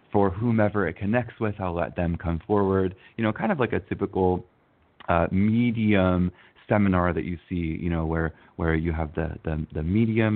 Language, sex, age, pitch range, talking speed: English, male, 20-39, 85-110 Hz, 190 wpm